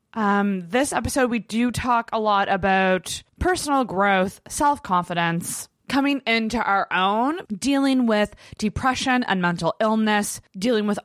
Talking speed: 130 wpm